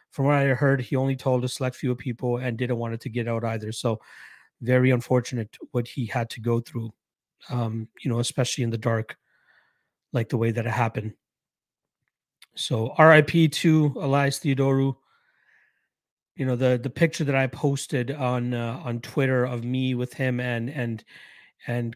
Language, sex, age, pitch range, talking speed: English, male, 30-49, 120-135 Hz, 180 wpm